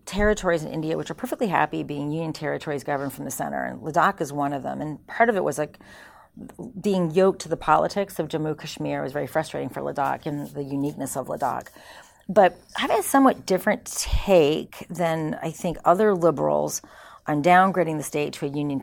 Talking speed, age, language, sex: 200 wpm, 40-59, English, female